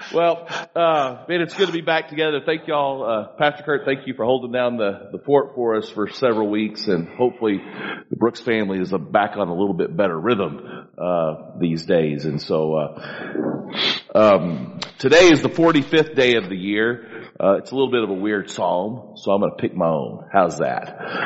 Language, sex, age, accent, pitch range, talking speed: English, male, 40-59, American, 95-140 Hz, 205 wpm